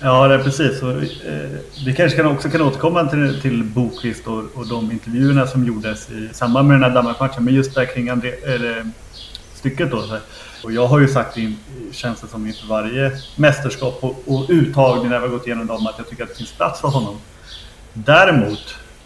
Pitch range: 110-135 Hz